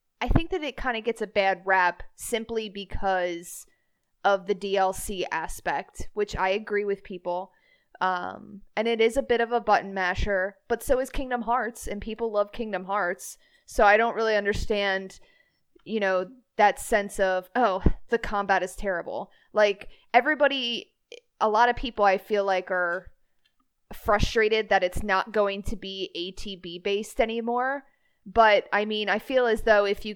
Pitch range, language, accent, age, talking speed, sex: 190-230 Hz, English, American, 20-39, 170 wpm, female